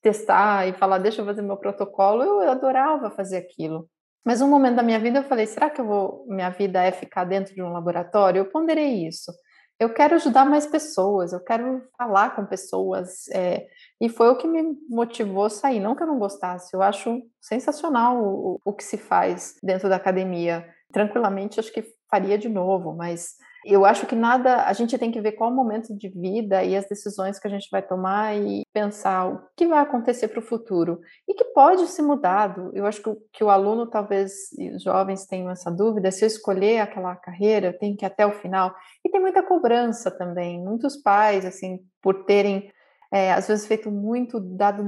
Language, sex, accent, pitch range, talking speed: Portuguese, female, Brazilian, 190-235 Hz, 205 wpm